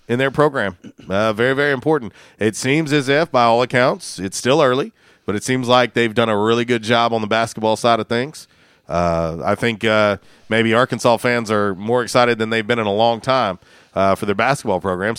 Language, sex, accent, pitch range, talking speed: English, male, American, 110-130 Hz, 215 wpm